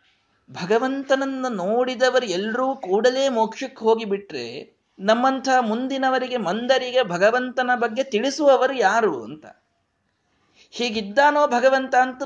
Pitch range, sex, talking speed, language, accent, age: 160-250 Hz, male, 90 wpm, Kannada, native, 20-39